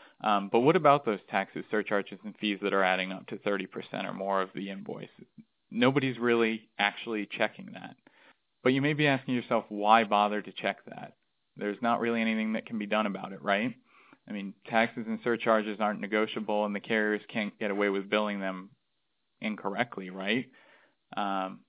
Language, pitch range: English, 105-120 Hz